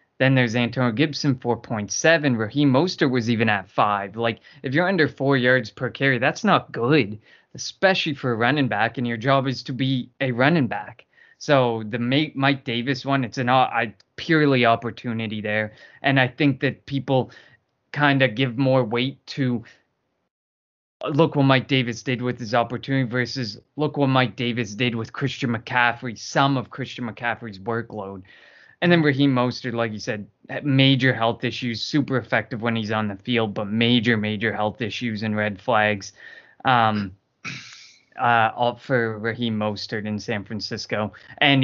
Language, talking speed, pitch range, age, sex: English, 165 wpm, 110-135 Hz, 20-39, male